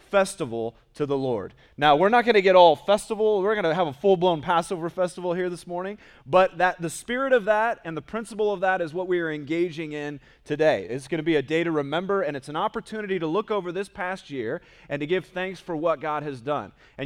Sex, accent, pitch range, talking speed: male, American, 145-185 Hz, 245 wpm